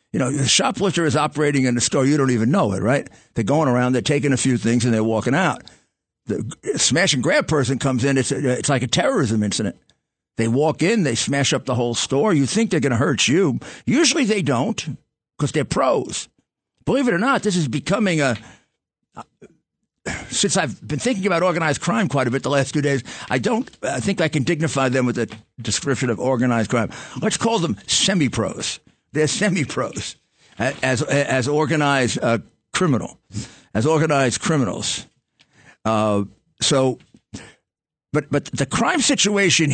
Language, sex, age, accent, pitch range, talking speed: English, male, 50-69, American, 125-175 Hz, 185 wpm